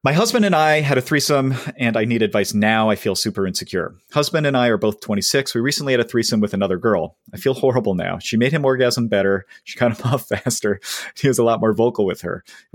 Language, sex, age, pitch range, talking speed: English, male, 30-49, 95-130 Hz, 250 wpm